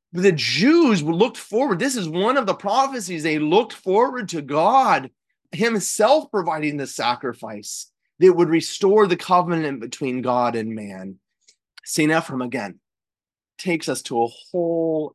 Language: English